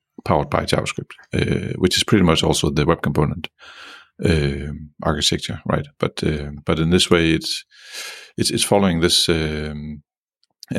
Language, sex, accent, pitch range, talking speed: English, male, Danish, 75-90 Hz, 150 wpm